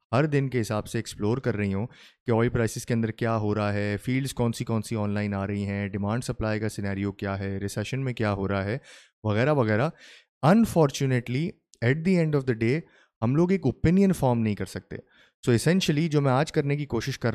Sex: male